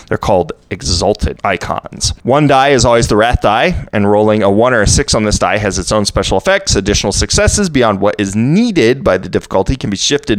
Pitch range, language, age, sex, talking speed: 100-135 Hz, English, 30-49, male, 220 wpm